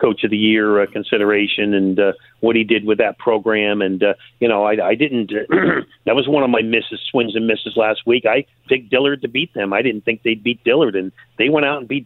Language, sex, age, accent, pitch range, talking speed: English, male, 50-69, American, 110-130 Hz, 250 wpm